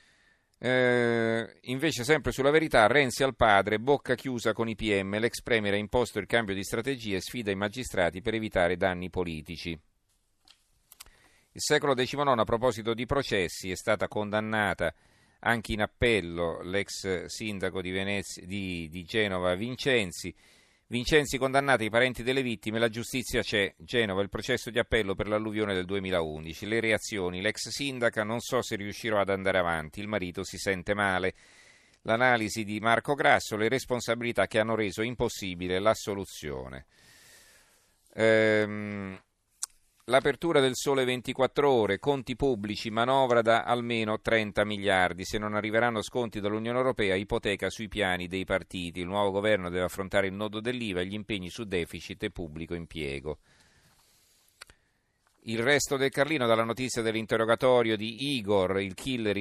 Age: 40-59